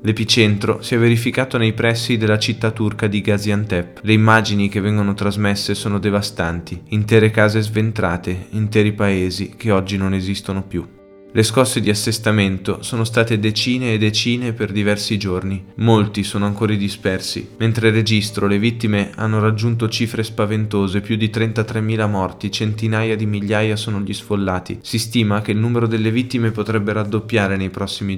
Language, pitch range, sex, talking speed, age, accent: Italian, 100-115 Hz, male, 155 wpm, 20-39, native